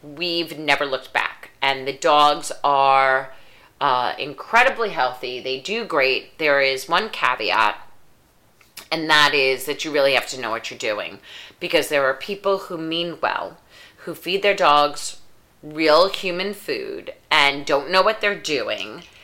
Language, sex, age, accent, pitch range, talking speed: English, female, 30-49, American, 135-185 Hz, 155 wpm